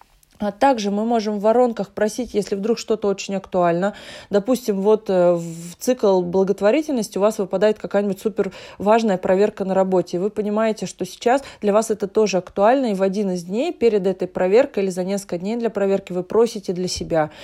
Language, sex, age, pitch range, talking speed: Russian, female, 20-39, 185-225 Hz, 180 wpm